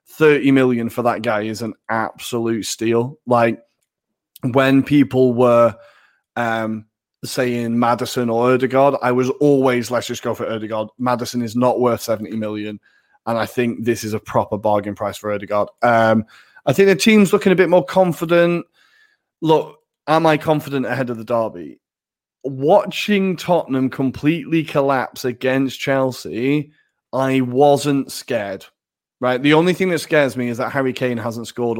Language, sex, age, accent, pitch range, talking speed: English, male, 30-49, British, 115-145 Hz, 155 wpm